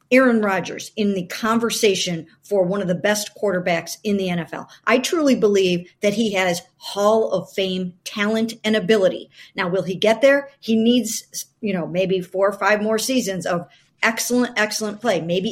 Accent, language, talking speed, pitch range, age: American, English, 180 wpm, 190-245 Hz, 50-69